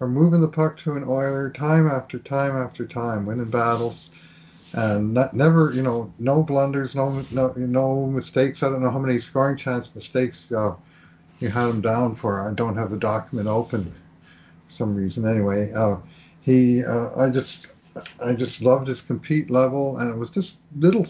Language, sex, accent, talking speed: English, male, American, 180 wpm